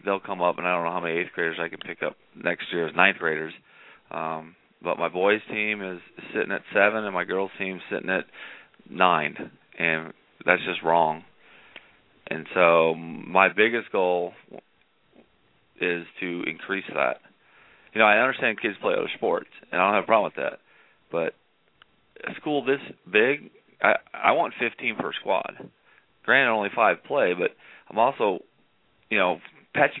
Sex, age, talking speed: male, 30-49, 175 wpm